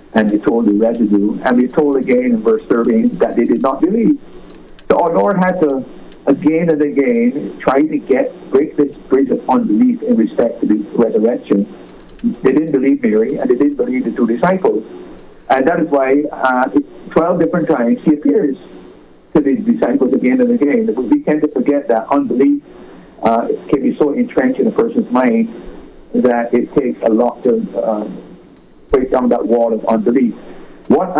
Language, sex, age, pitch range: English, male, 50-69, 120-180 Hz